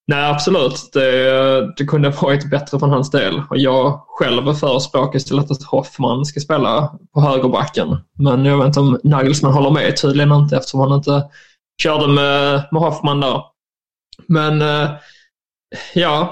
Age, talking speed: 20-39, 145 wpm